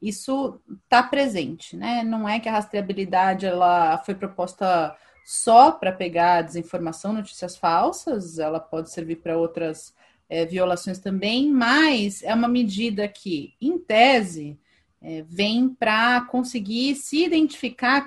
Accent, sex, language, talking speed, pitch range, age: Brazilian, female, Portuguese, 135 wpm, 195-250 Hz, 30-49